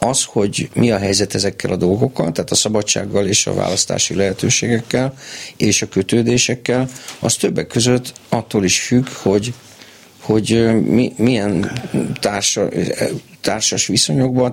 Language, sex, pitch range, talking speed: Hungarian, male, 100-125 Hz, 130 wpm